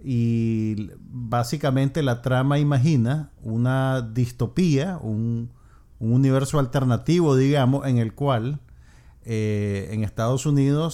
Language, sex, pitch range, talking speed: Spanish, male, 115-135 Hz, 105 wpm